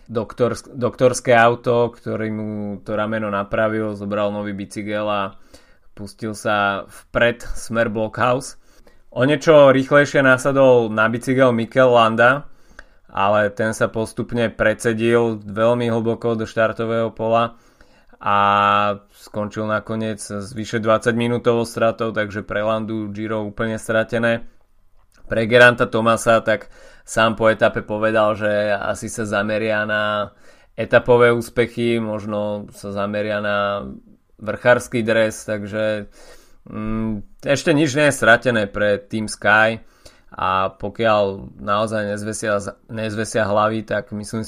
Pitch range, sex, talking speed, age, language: 105-115 Hz, male, 115 wpm, 20-39, Slovak